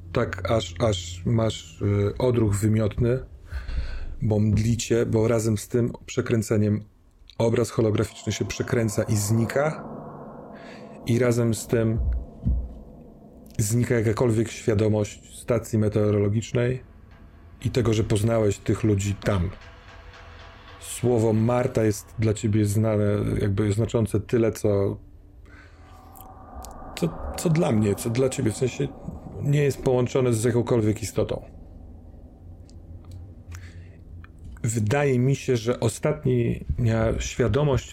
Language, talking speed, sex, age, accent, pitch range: Polish, 105 wpm, male, 30-49, native, 90-115 Hz